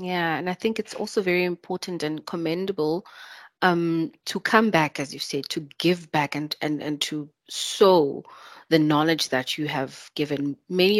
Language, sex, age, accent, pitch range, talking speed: English, female, 30-49, South African, 155-195 Hz, 175 wpm